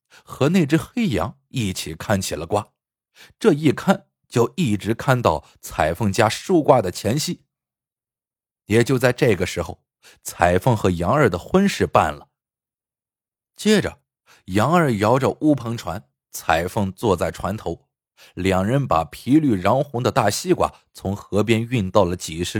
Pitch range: 100-140 Hz